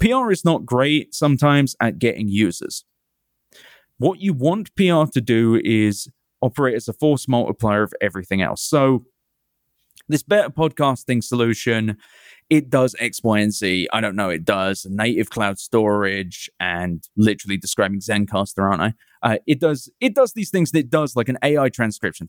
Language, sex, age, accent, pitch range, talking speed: English, male, 30-49, British, 110-155 Hz, 165 wpm